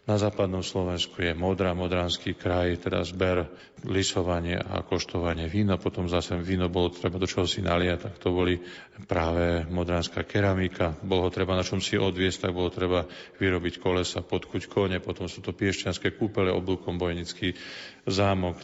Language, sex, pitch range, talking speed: Slovak, male, 90-100 Hz, 160 wpm